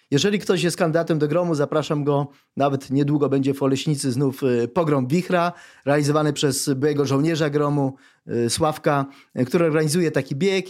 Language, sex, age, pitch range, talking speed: Polish, male, 30-49, 140-185 Hz, 145 wpm